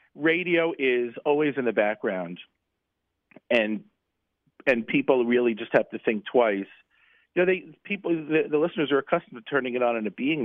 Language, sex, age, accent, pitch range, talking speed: English, male, 50-69, American, 110-135 Hz, 180 wpm